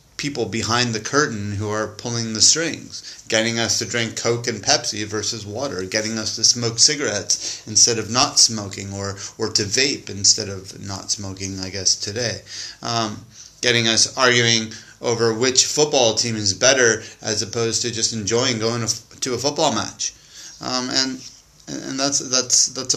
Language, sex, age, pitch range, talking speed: English, male, 30-49, 110-125 Hz, 165 wpm